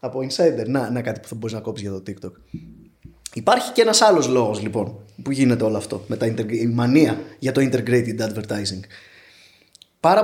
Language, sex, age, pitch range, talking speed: Greek, male, 20-39, 120-190 Hz, 195 wpm